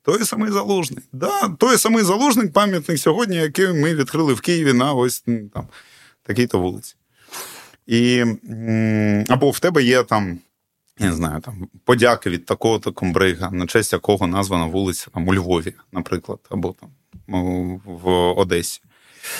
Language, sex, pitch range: Ukrainian, male, 105-130 Hz